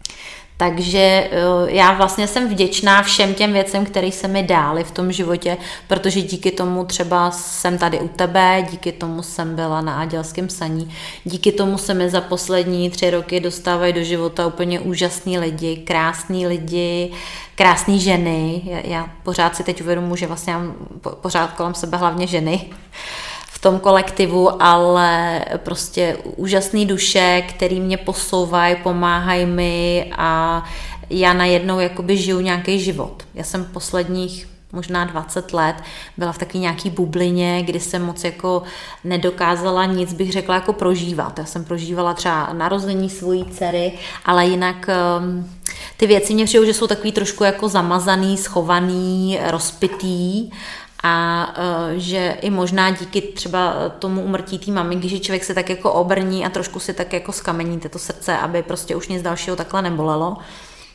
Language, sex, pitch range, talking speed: Czech, female, 175-190 Hz, 150 wpm